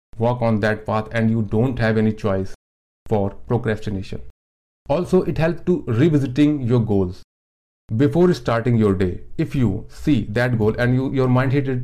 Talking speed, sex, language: 165 wpm, male, Hindi